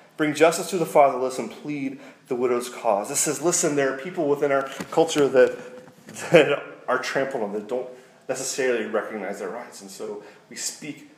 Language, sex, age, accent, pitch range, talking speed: English, male, 30-49, American, 110-145 Hz, 185 wpm